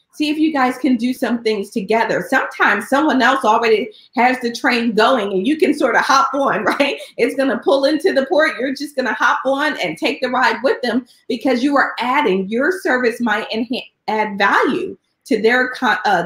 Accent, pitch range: American, 215-290 Hz